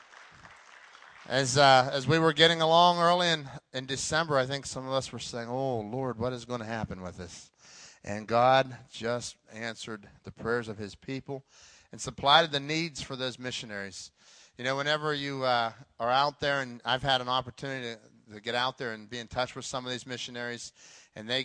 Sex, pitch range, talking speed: male, 115-135 Hz, 200 wpm